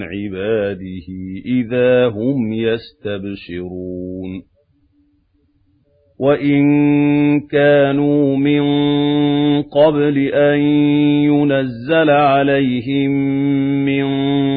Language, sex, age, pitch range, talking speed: Arabic, male, 50-69, 120-145 Hz, 45 wpm